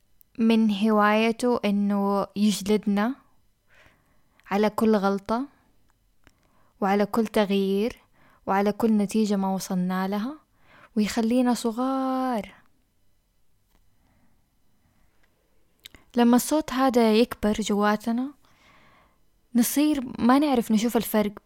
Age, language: 10-29, Arabic